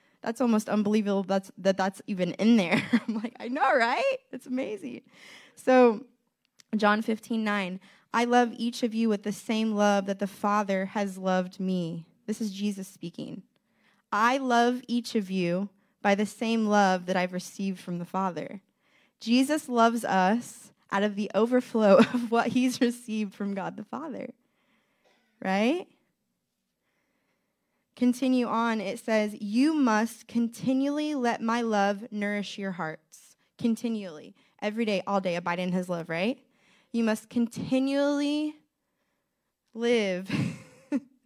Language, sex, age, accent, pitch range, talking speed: English, female, 10-29, American, 200-240 Hz, 140 wpm